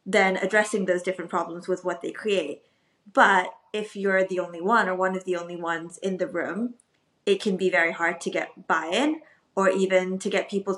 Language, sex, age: English, female, 20-39